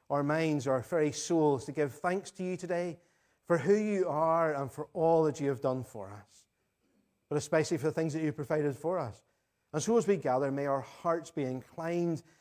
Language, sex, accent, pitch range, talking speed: English, male, British, 130-165 Hz, 215 wpm